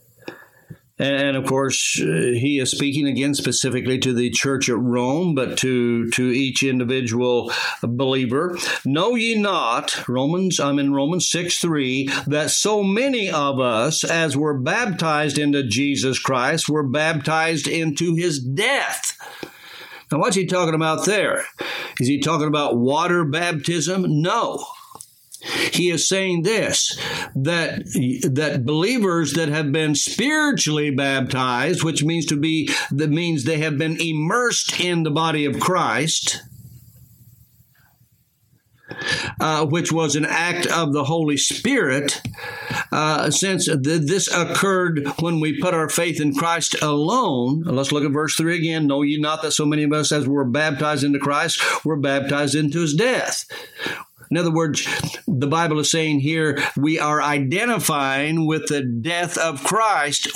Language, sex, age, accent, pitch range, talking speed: English, male, 60-79, American, 135-165 Hz, 145 wpm